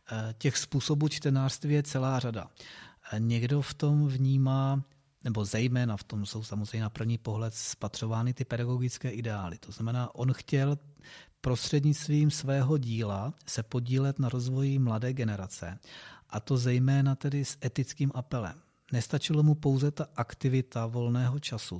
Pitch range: 115-140 Hz